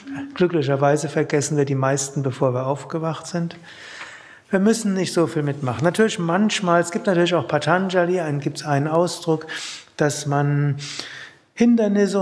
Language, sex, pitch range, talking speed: German, male, 145-180 Hz, 140 wpm